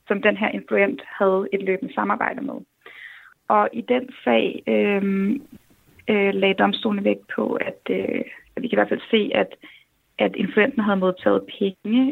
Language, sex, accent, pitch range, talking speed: Danish, female, native, 200-240 Hz, 155 wpm